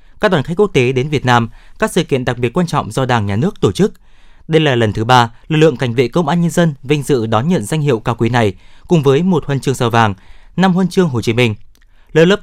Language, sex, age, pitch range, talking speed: Vietnamese, male, 20-39, 120-160 Hz, 275 wpm